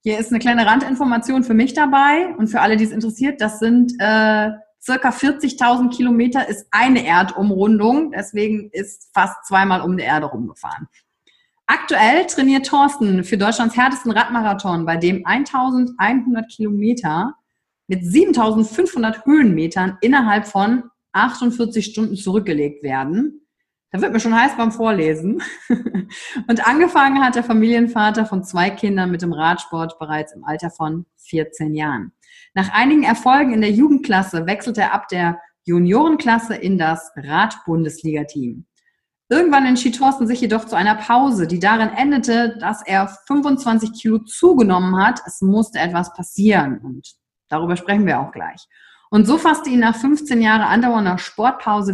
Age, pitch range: 30-49, 185-255 Hz